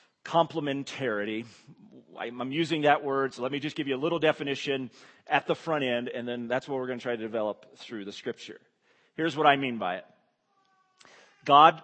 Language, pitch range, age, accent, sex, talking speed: English, 130-165 Hz, 40-59, American, male, 195 wpm